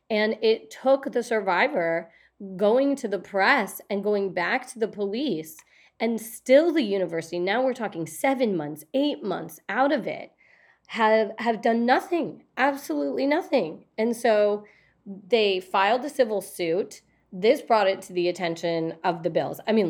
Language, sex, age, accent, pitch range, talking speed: English, female, 30-49, American, 185-240 Hz, 160 wpm